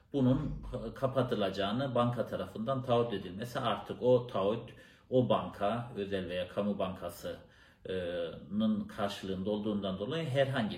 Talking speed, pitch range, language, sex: 110 wpm, 105-135 Hz, Turkish, male